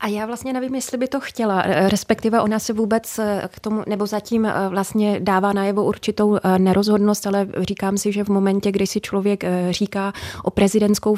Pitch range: 195-215 Hz